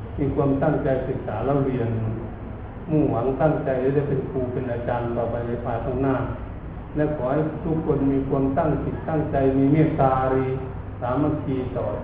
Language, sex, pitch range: Thai, male, 115-150 Hz